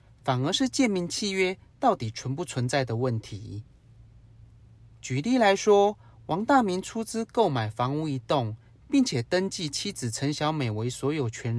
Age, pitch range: 30-49, 115-185 Hz